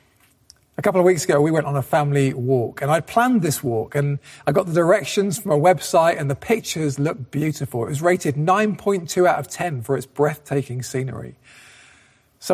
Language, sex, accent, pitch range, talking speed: English, male, British, 135-180 Hz, 195 wpm